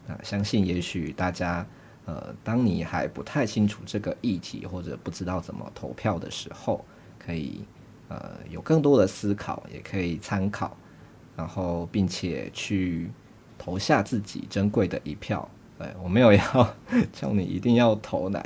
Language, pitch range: Chinese, 90-105 Hz